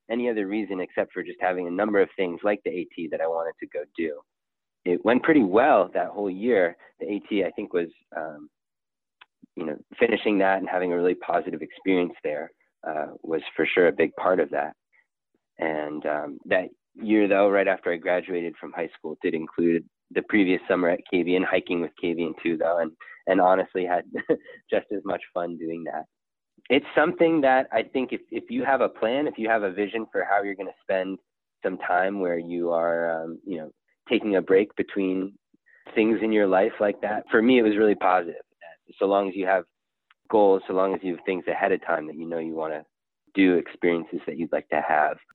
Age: 20-39